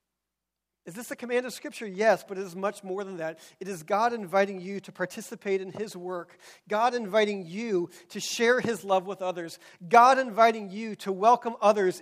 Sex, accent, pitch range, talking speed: male, American, 160-205 Hz, 195 wpm